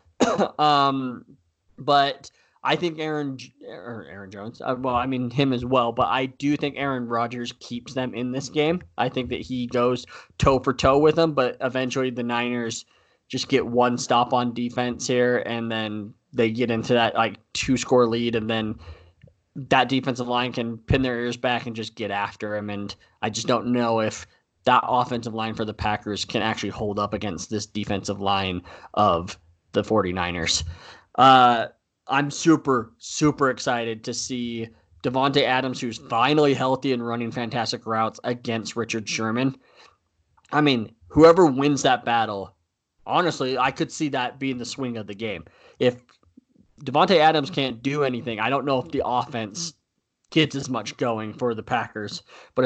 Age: 20-39